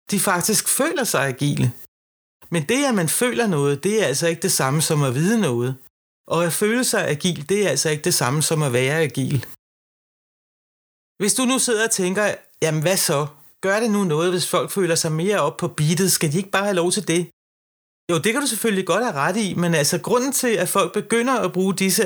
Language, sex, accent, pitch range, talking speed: Danish, male, native, 155-210 Hz, 230 wpm